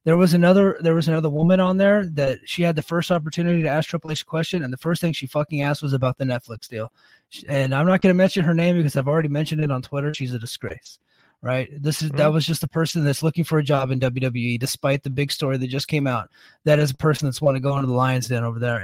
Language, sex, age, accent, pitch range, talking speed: English, male, 30-49, American, 135-170 Hz, 275 wpm